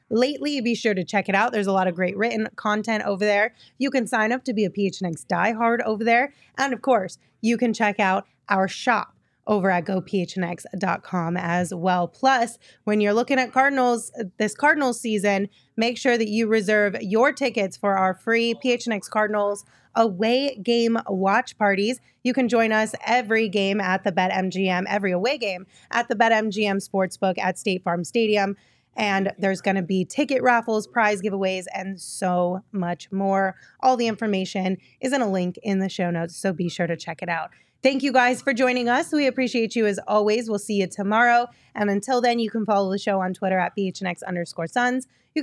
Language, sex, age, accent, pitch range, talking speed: English, female, 20-39, American, 190-235 Hz, 195 wpm